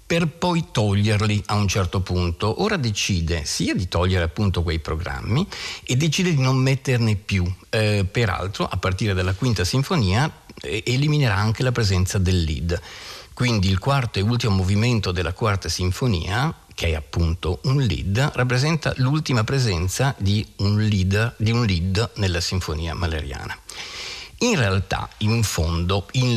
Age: 50-69